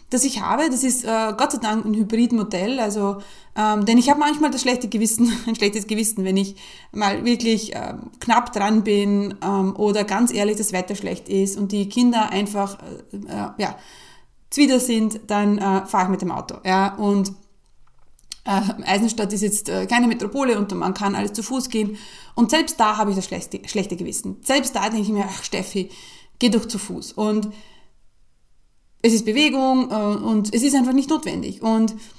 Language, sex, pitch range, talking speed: German, female, 205-250 Hz, 190 wpm